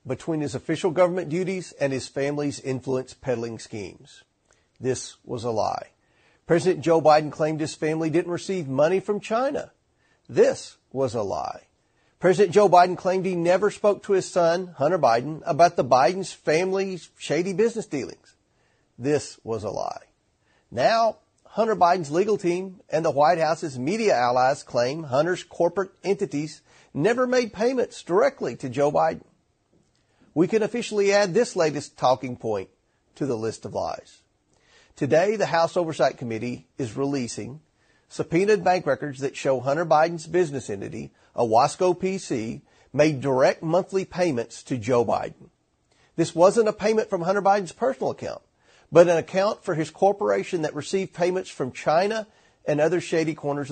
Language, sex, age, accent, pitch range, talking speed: English, male, 40-59, American, 145-190 Hz, 150 wpm